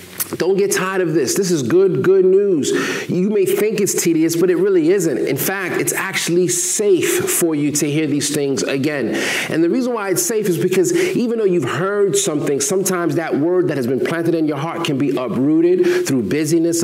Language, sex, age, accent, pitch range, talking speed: English, male, 30-49, American, 160-195 Hz, 210 wpm